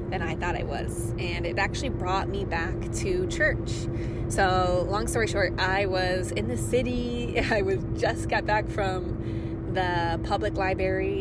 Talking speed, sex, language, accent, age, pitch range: 165 wpm, female, English, American, 20-39, 110-120 Hz